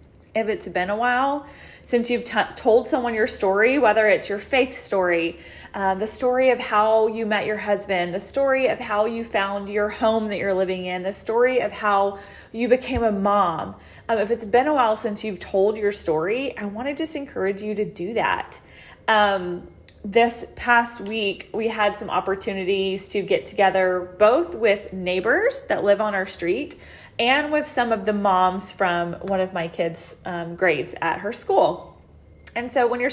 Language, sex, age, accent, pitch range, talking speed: English, female, 30-49, American, 190-240 Hz, 190 wpm